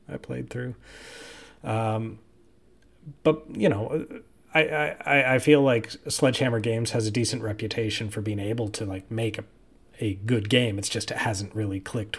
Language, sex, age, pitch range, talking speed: English, male, 30-49, 105-125 Hz, 165 wpm